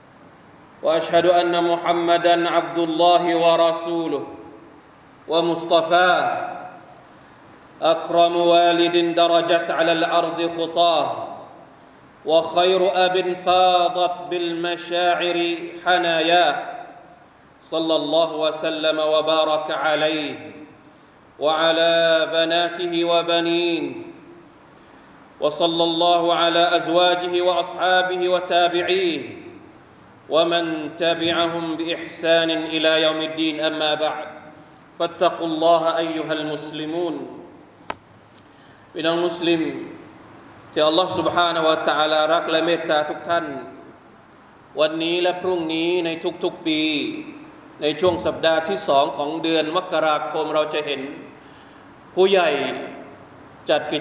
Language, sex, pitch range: Thai, male, 155-175 Hz